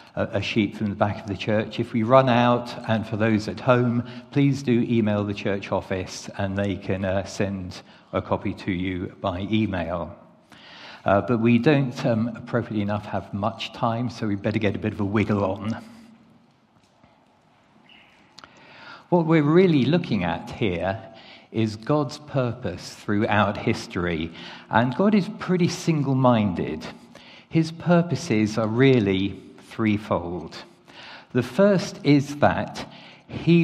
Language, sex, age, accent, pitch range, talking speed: English, male, 50-69, British, 100-130 Hz, 140 wpm